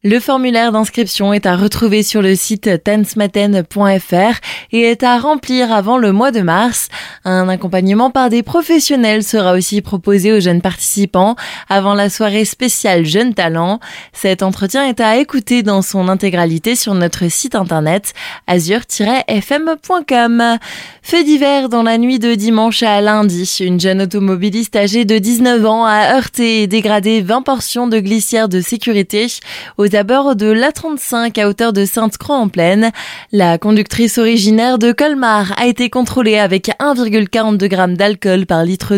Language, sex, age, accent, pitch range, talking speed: French, female, 20-39, French, 195-240 Hz, 150 wpm